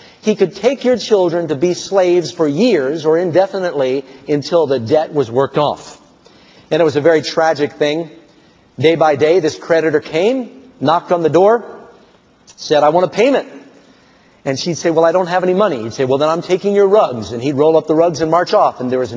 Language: English